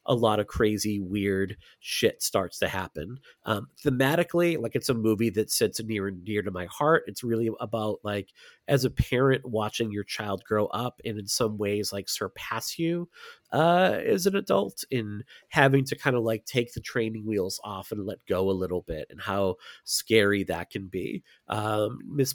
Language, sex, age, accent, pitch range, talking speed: English, male, 30-49, American, 100-125 Hz, 190 wpm